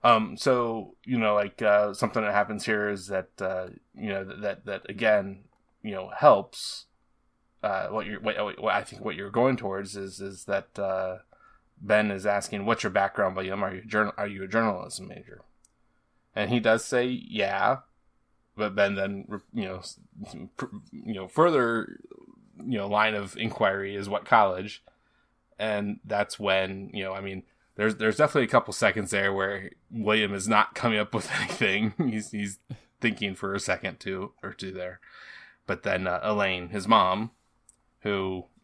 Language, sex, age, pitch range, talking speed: English, male, 20-39, 95-110 Hz, 170 wpm